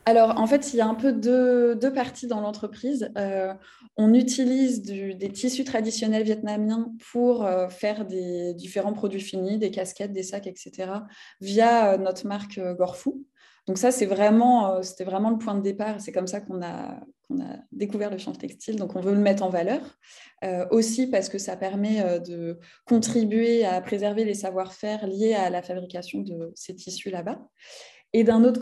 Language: French